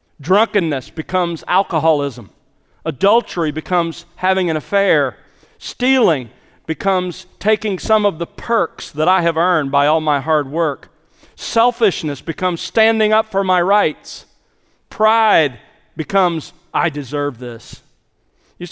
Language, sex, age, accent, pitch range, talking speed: English, male, 40-59, American, 165-215 Hz, 120 wpm